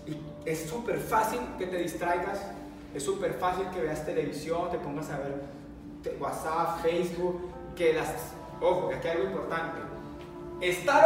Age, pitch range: 30-49, 160-220 Hz